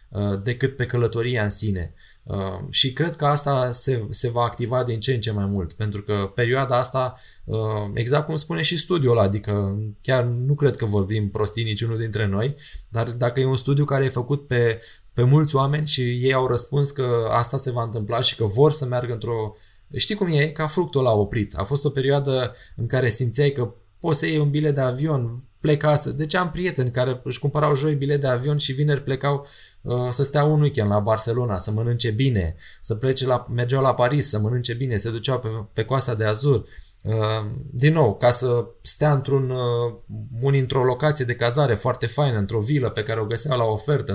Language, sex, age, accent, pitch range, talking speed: Romanian, male, 20-39, native, 115-140 Hz, 200 wpm